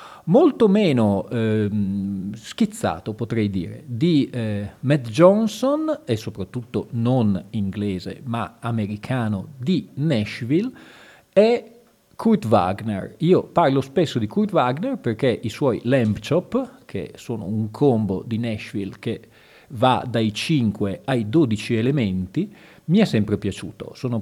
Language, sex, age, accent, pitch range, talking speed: Italian, male, 40-59, native, 105-150 Hz, 125 wpm